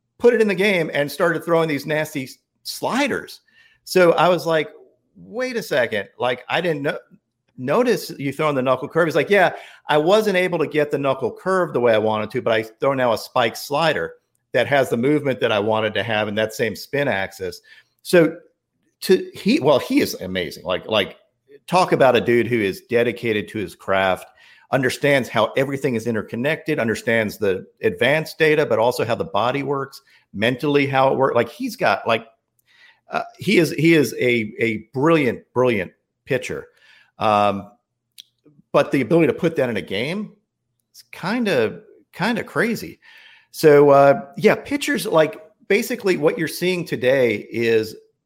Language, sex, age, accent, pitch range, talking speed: English, male, 50-69, American, 120-195 Hz, 180 wpm